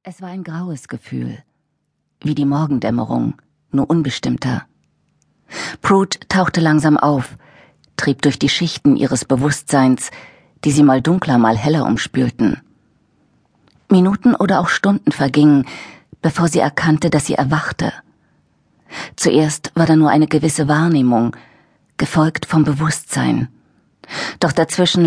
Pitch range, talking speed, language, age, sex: 135-170 Hz, 120 wpm, German, 40-59, female